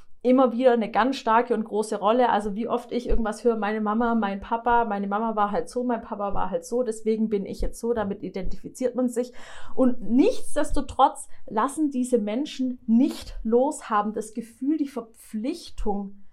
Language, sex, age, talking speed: German, female, 30-49, 180 wpm